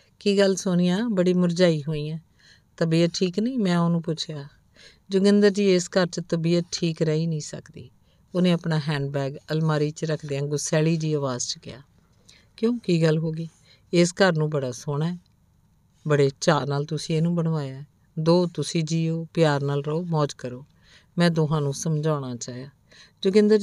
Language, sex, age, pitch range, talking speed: Punjabi, female, 50-69, 145-175 Hz, 165 wpm